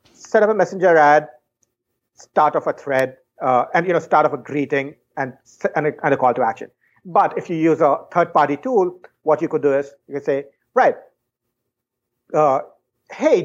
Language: English